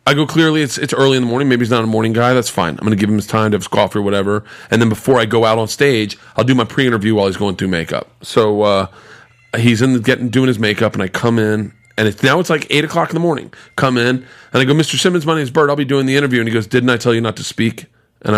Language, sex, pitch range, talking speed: English, male, 105-130 Hz, 315 wpm